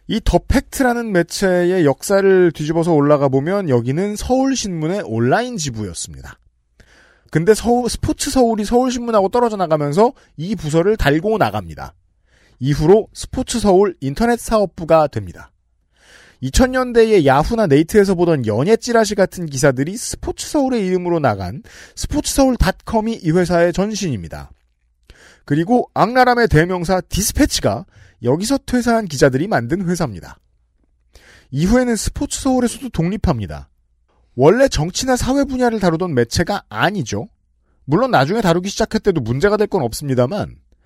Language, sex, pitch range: Korean, male, 135-225 Hz